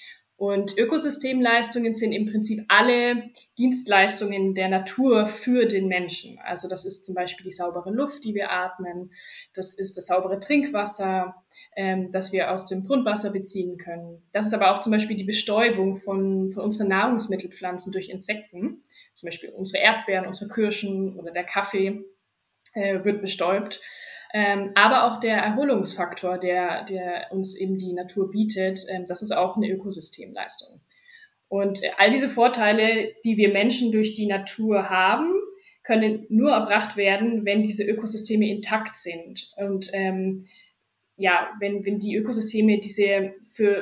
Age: 20-39